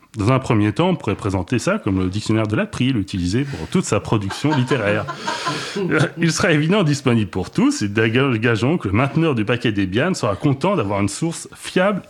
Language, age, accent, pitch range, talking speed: French, 30-49, French, 105-150 Hz, 200 wpm